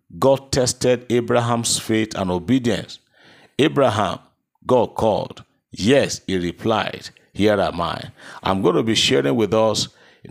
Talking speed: 135 wpm